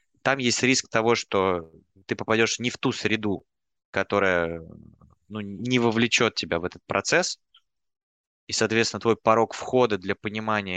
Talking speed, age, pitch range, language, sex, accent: 145 wpm, 20-39, 95-115 Hz, Russian, male, native